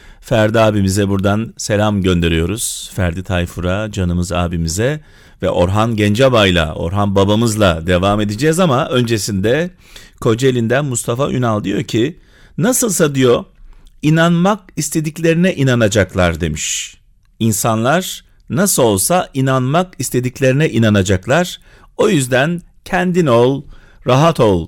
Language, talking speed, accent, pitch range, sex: Turkish, 100 wpm, native, 105-165 Hz, male